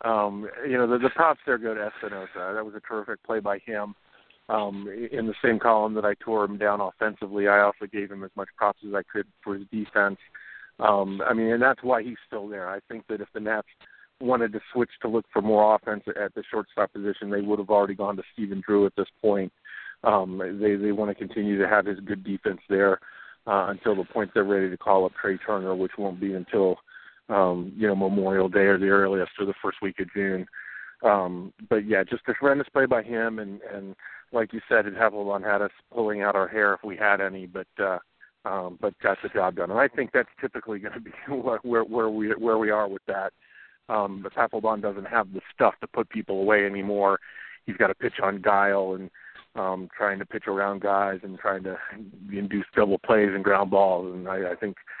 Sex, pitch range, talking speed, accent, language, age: male, 100-110 Hz, 225 wpm, American, English, 50-69